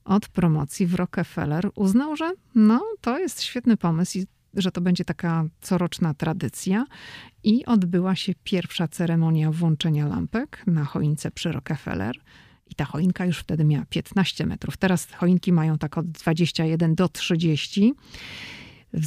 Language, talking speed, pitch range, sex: Polish, 140 wpm, 155-185 Hz, female